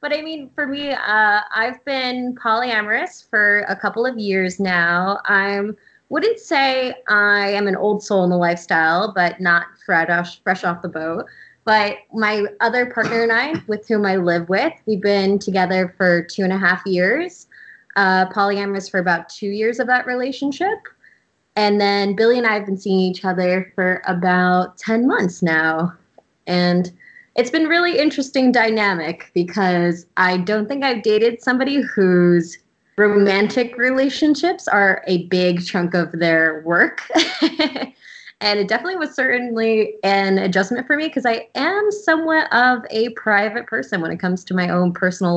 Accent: American